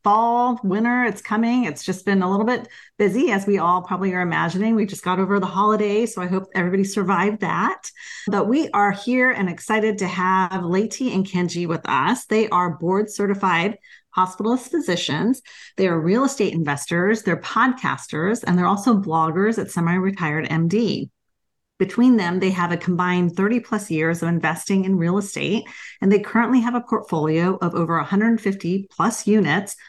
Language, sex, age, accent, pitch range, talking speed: English, female, 40-59, American, 175-220 Hz, 170 wpm